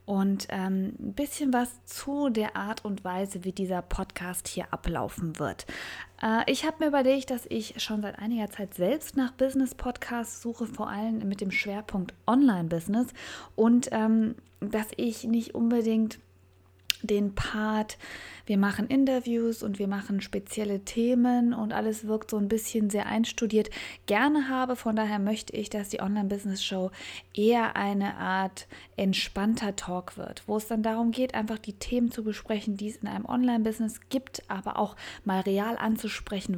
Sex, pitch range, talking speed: female, 200-235 Hz, 160 wpm